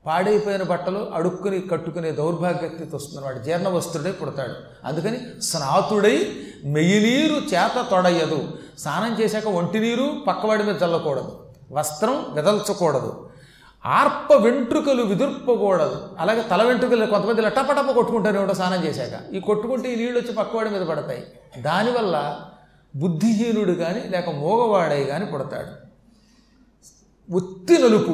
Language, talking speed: Telugu, 105 wpm